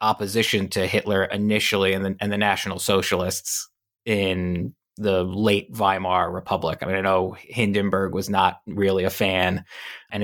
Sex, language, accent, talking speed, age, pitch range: male, English, American, 145 wpm, 20-39, 95-115 Hz